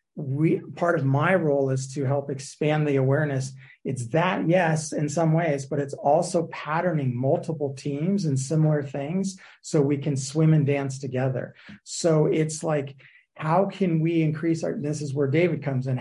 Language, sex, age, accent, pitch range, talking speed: English, male, 30-49, American, 140-160 Hz, 175 wpm